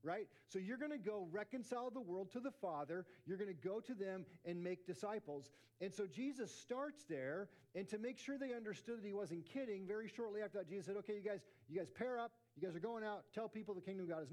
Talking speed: 255 wpm